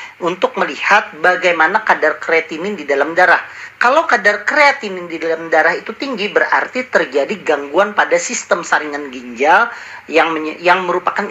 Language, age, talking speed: Indonesian, 40-59, 145 wpm